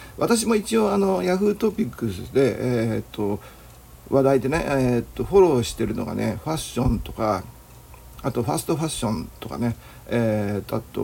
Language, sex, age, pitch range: Japanese, male, 60-79, 110-160 Hz